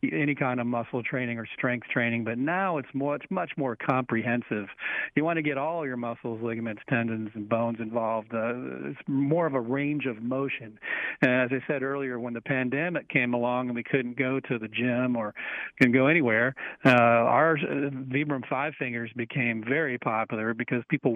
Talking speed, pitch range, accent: 195 wpm, 115-135 Hz, American